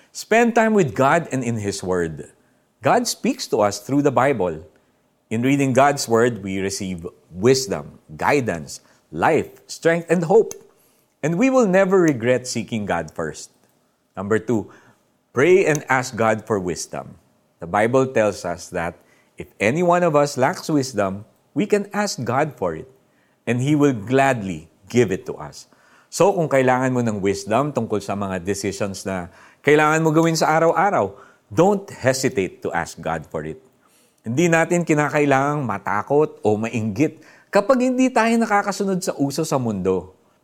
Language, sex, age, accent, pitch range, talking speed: Filipino, male, 50-69, native, 100-165 Hz, 155 wpm